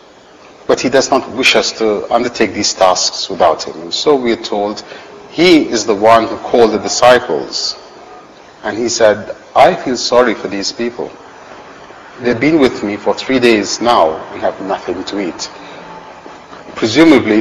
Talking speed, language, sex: 160 wpm, English, male